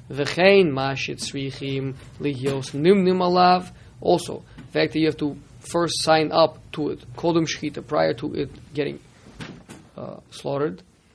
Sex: male